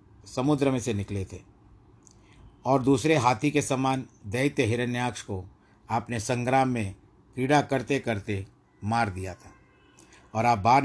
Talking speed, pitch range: 140 wpm, 100-115 Hz